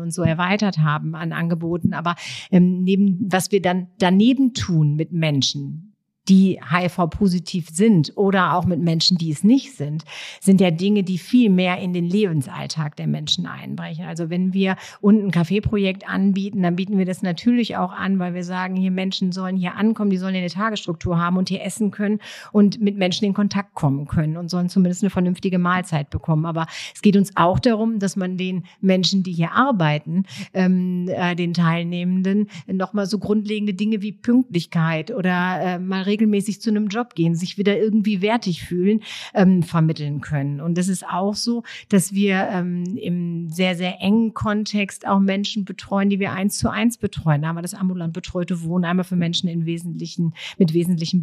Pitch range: 170-200 Hz